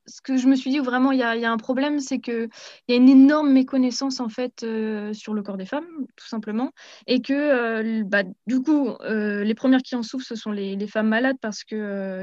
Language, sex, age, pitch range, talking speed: French, female, 20-39, 220-265 Hz, 255 wpm